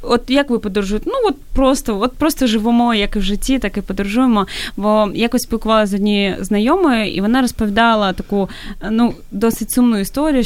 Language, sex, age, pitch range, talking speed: Ukrainian, female, 20-39, 195-235 Hz, 180 wpm